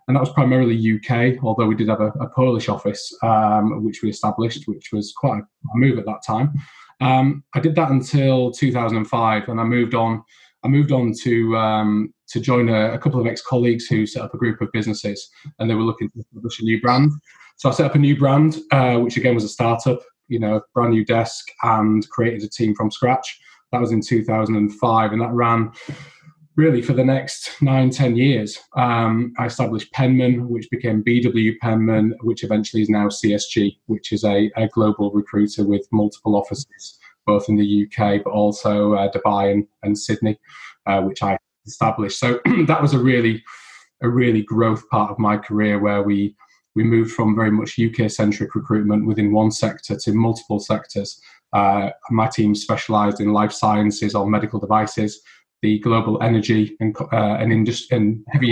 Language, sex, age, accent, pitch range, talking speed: English, male, 20-39, British, 105-125 Hz, 195 wpm